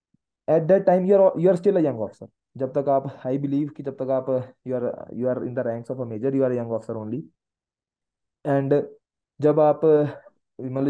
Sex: male